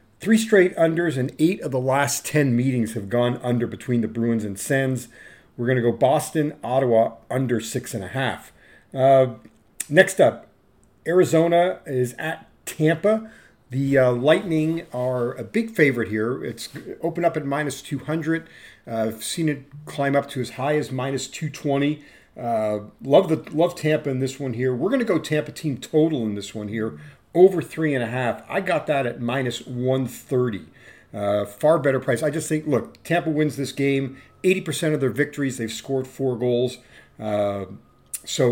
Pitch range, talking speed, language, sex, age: 120-150 Hz, 180 wpm, English, male, 40-59